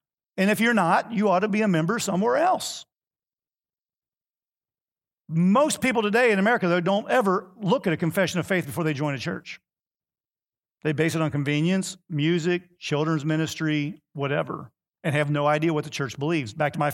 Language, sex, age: English, male, 50-69